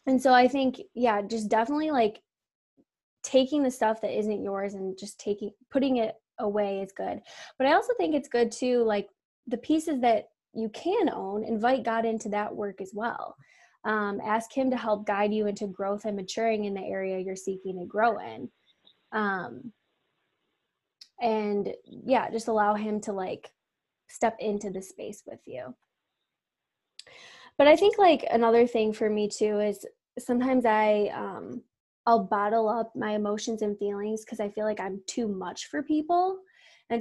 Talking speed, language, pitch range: 170 wpm, English, 210-255 Hz